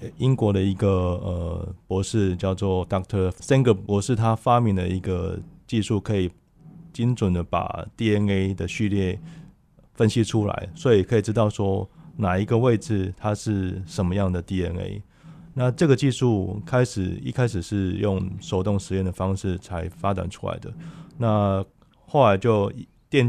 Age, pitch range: 20-39, 95-115 Hz